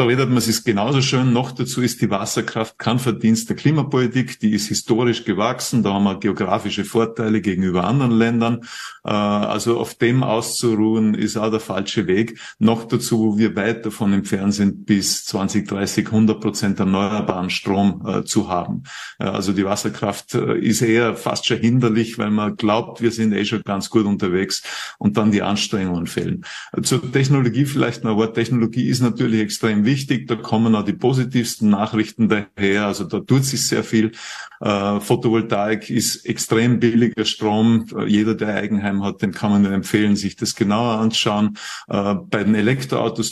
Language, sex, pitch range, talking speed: German, male, 105-120 Hz, 175 wpm